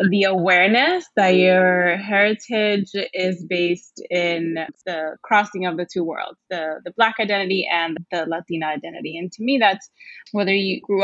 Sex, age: female, 20-39